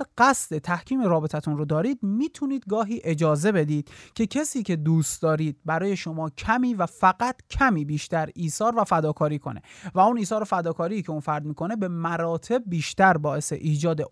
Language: Persian